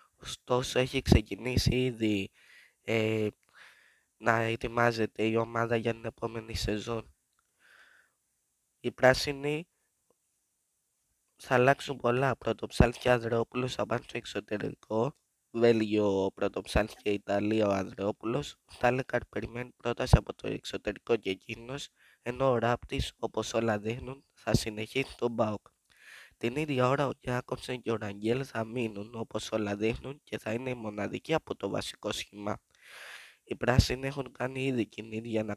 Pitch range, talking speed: 105-125 Hz, 125 wpm